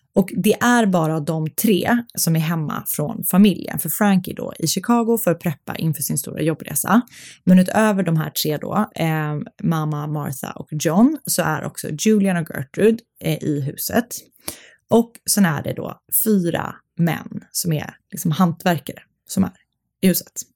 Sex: female